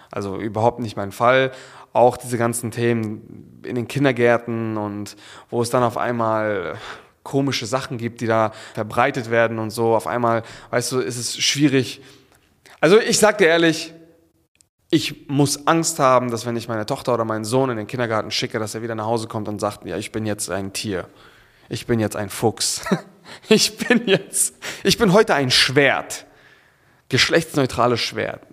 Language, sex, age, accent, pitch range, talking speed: German, male, 30-49, German, 110-150 Hz, 175 wpm